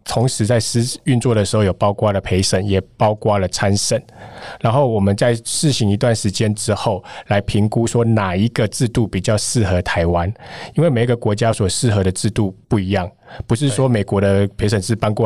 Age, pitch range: 20-39, 100-120 Hz